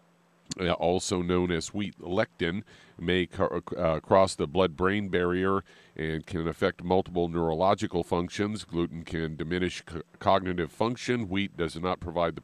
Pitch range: 85-100 Hz